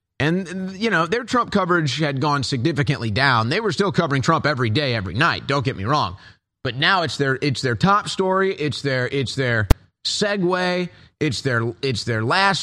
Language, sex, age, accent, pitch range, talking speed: English, male, 30-49, American, 130-185 Hz, 195 wpm